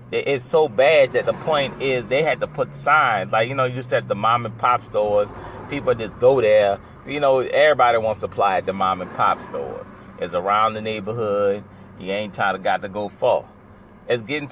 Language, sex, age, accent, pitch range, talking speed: English, male, 30-49, American, 100-130 Hz, 195 wpm